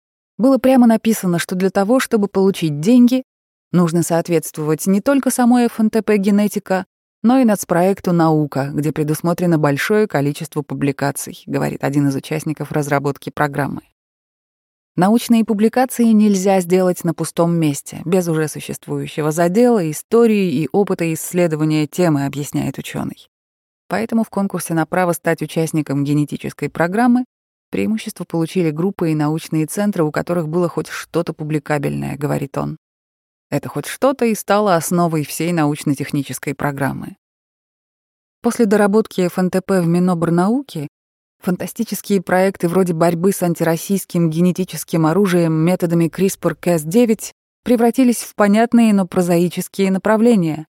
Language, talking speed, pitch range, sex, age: Russian, 120 wpm, 155-205 Hz, female, 20-39